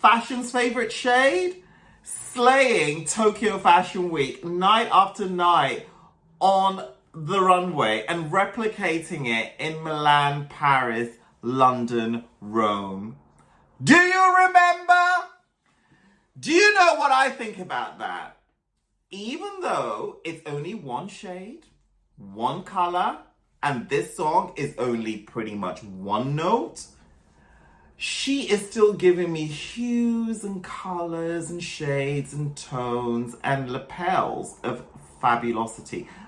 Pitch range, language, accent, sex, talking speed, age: 140-230 Hz, English, British, male, 110 wpm, 30-49